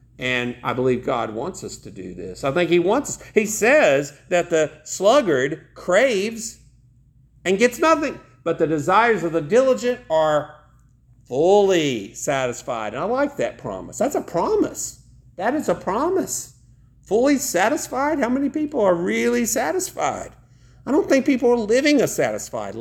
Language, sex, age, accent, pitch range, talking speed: English, male, 50-69, American, 130-195 Hz, 155 wpm